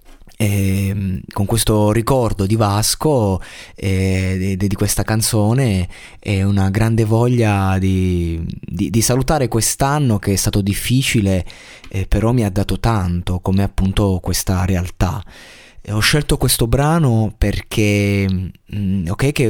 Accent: native